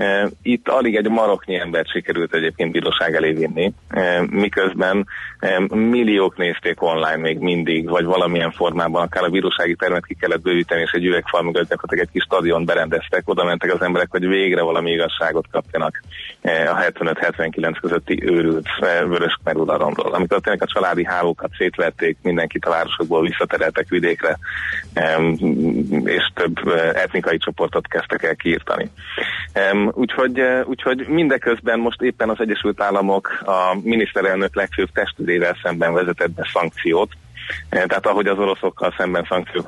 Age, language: 30-49, Hungarian